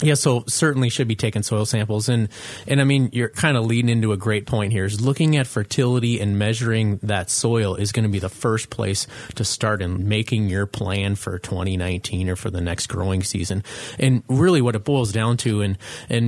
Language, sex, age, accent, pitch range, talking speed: English, male, 30-49, American, 100-125 Hz, 220 wpm